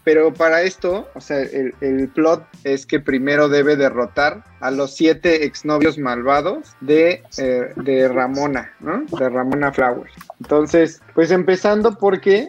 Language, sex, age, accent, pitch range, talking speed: Spanish, male, 30-49, Mexican, 135-165 Hz, 145 wpm